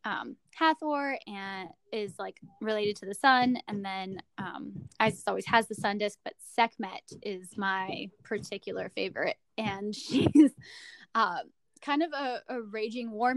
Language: English